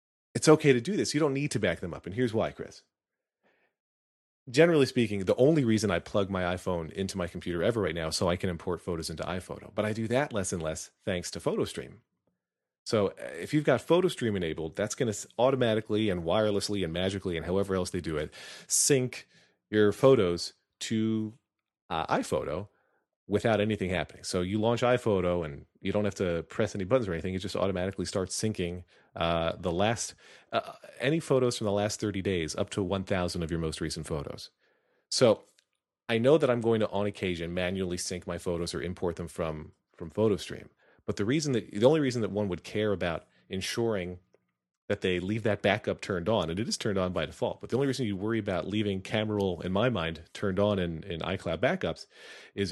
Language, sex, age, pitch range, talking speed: English, male, 30-49, 85-110 Hz, 205 wpm